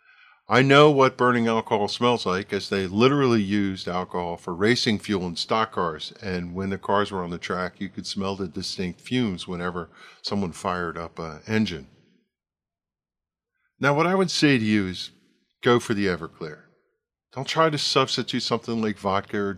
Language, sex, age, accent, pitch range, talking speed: English, male, 50-69, American, 95-125 Hz, 180 wpm